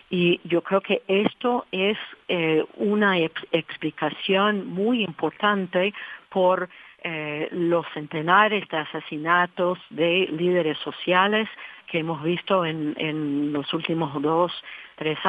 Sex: female